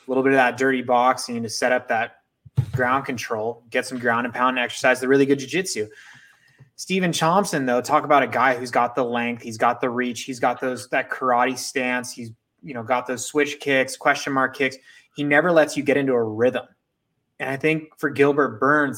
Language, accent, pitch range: English, American, 125-140 Hz